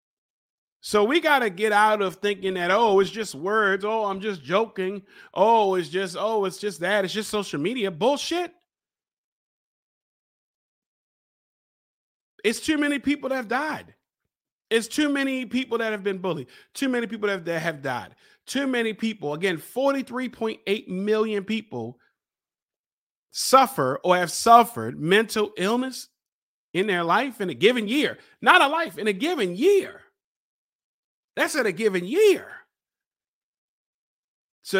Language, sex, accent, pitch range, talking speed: English, male, American, 185-230 Hz, 145 wpm